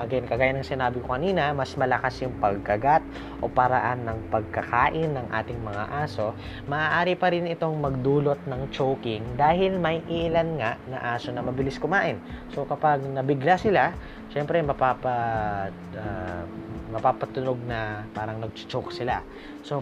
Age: 20-39